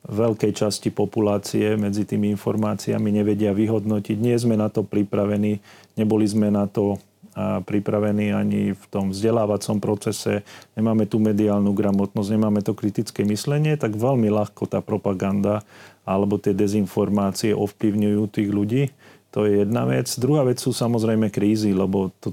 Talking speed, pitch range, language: 140 wpm, 100-110 Hz, Slovak